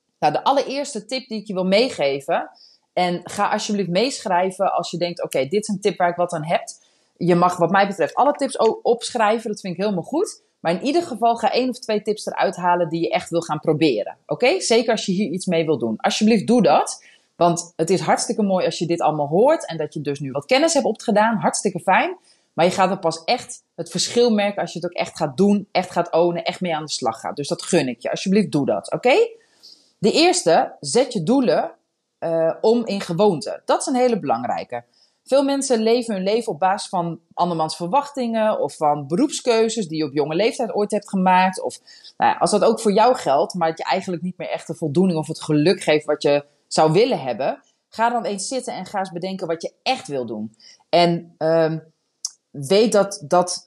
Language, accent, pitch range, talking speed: Dutch, Dutch, 165-225 Hz, 230 wpm